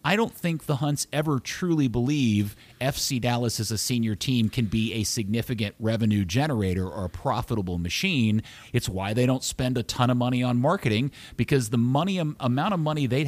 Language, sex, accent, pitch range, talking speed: English, male, American, 110-135 Hz, 190 wpm